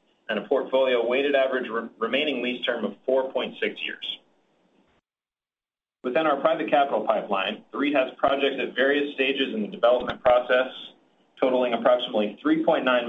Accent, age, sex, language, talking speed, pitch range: American, 30-49, male, English, 140 wpm, 115-150 Hz